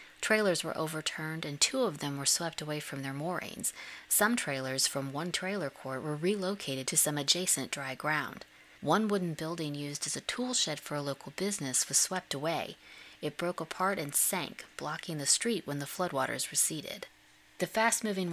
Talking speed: 180 wpm